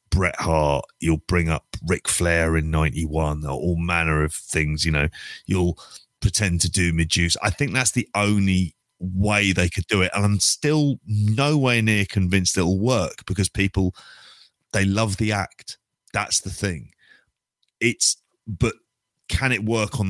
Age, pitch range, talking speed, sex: 30-49, 85-105 Hz, 160 wpm, male